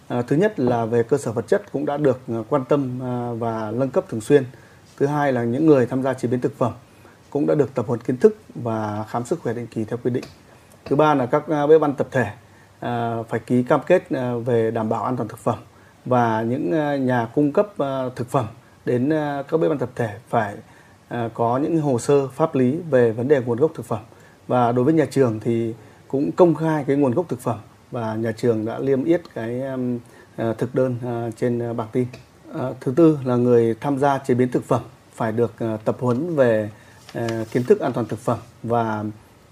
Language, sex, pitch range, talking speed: Vietnamese, male, 115-135 Hz, 210 wpm